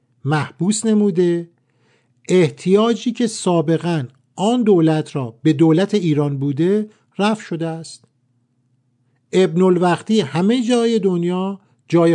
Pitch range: 135-190 Hz